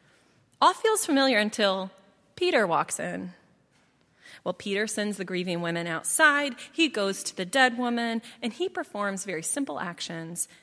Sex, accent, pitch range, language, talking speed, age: female, American, 195-320 Hz, English, 145 wpm, 20-39